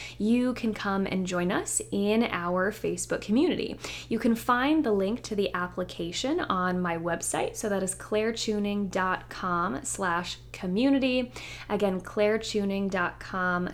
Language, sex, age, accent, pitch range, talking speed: English, female, 20-39, American, 185-245 Hz, 125 wpm